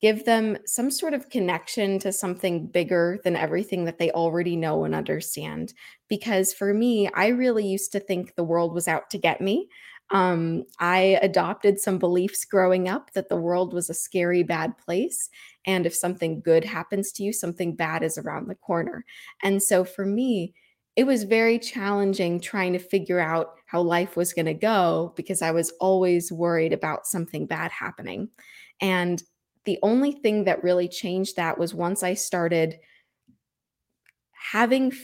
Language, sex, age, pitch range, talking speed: English, female, 20-39, 175-210 Hz, 170 wpm